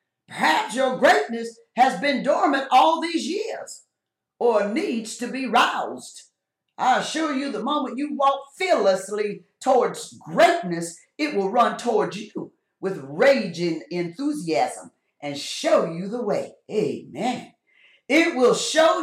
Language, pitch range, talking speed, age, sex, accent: English, 215-315 Hz, 130 wpm, 50-69, female, American